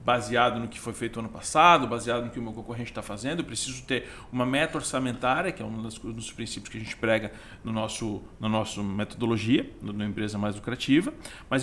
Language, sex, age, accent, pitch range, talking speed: Portuguese, male, 40-59, Brazilian, 120-185 Hz, 210 wpm